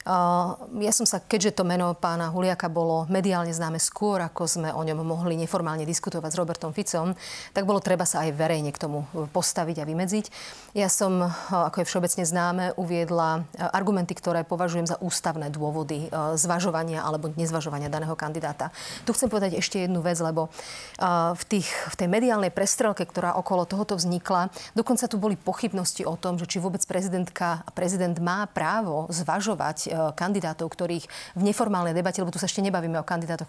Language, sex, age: Slovak, female, 30-49